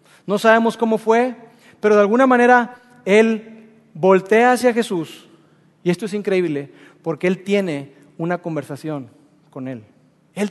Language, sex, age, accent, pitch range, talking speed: Spanish, male, 40-59, Mexican, 155-230 Hz, 135 wpm